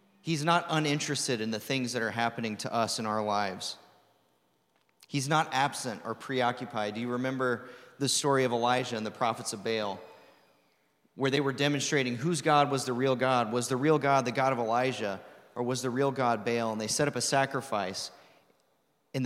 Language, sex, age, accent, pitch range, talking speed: English, male, 30-49, American, 115-145 Hz, 195 wpm